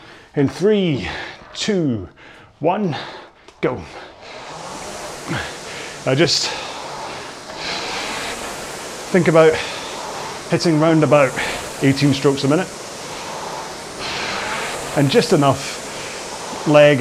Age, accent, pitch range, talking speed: 30-49, British, 140-170 Hz, 70 wpm